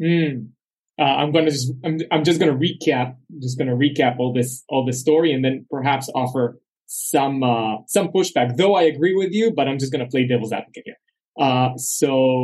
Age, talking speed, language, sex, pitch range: 20-39, 200 wpm, English, male, 125-155 Hz